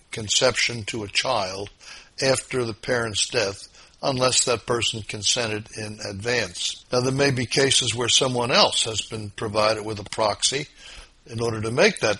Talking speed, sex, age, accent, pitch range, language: 160 wpm, male, 60-79, American, 105-125 Hz, English